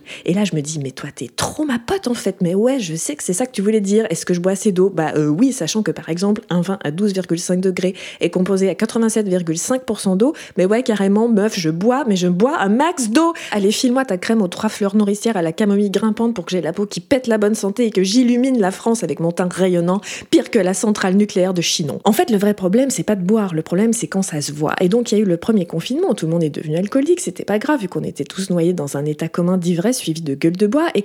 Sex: female